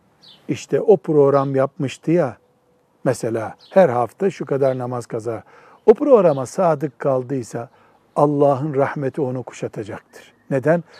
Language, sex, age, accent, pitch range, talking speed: Turkish, male, 60-79, native, 140-205 Hz, 115 wpm